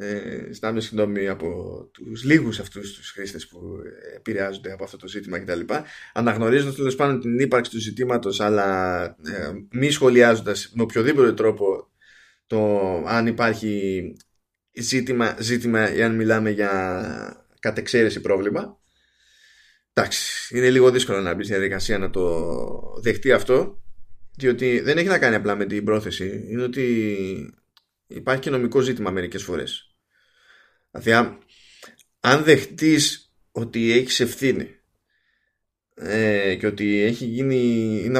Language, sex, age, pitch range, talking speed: Greek, male, 20-39, 100-125 Hz, 125 wpm